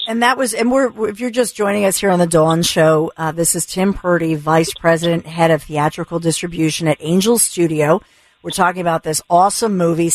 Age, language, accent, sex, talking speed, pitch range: 50-69, English, American, female, 205 wpm, 165-195 Hz